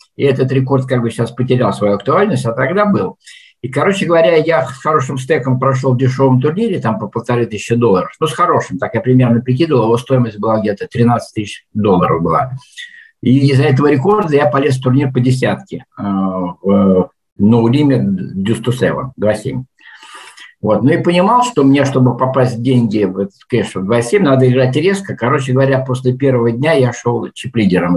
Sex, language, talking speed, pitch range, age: male, Russian, 175 wpm, 105-140 Hz, 50-69